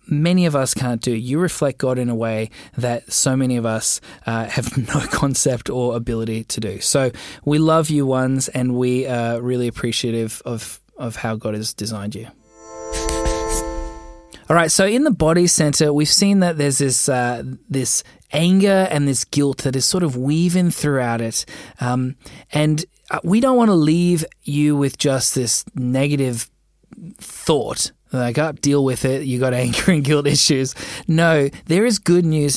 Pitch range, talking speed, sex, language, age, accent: 125-160 Hz, 175 wpm, male, English, 20-39, Australian